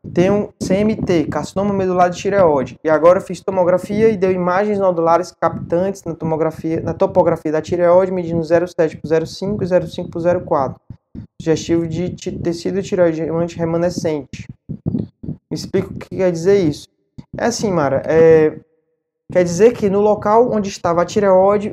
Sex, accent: male, Brazilian